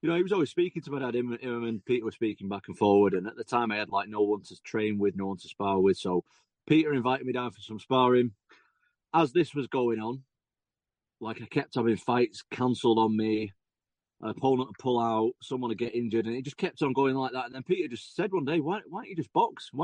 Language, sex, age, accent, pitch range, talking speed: English, male, 30-49, British, 105-135 Hz, 260 wpm